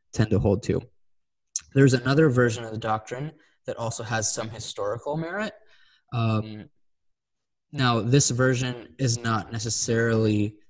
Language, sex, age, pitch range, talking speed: English, male, 20-39, 110-130 Hz, 130 wpm